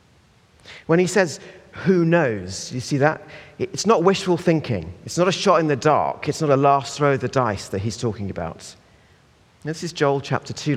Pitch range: 95-125 Hz